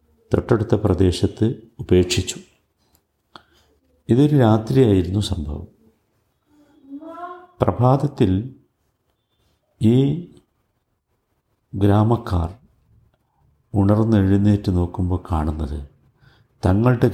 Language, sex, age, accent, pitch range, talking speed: Malayalam, male, 50-69, native, 90-110 Hz, 45 wpm